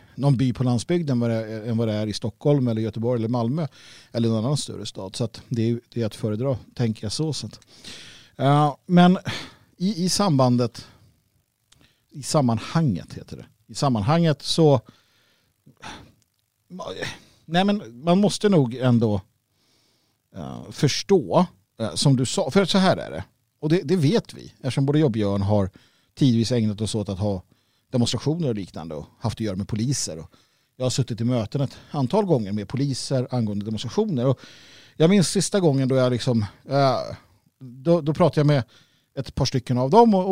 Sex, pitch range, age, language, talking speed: male, 115-160 Hz, 50-69, Swedish, 180 wpm